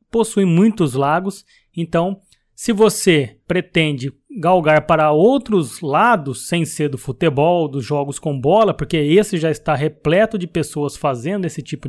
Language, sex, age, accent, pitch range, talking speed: Portuguese, male, 20-39, Brazilian, 155-210 Hz, 145 wpm